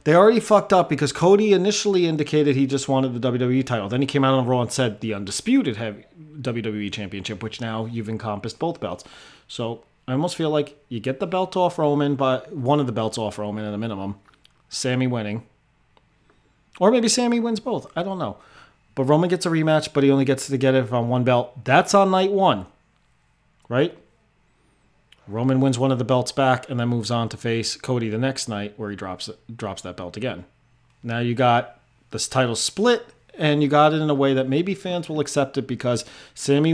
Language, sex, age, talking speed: English, male, 30-49, 210 wpm